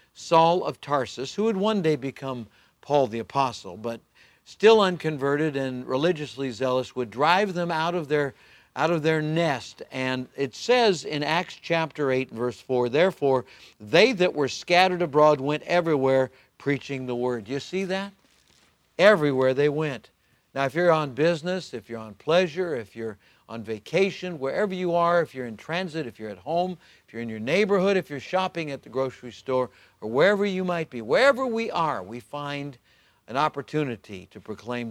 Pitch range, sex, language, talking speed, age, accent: 120-165 Hz, male, English, 175 wpm, 60-79, American